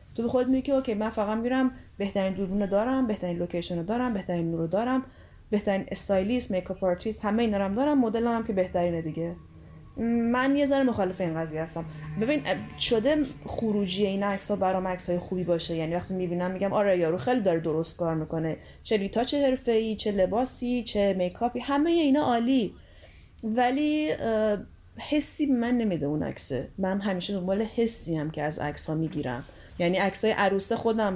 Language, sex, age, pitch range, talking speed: Persian, female, 10-29, 175-245 Hz, 170 wpm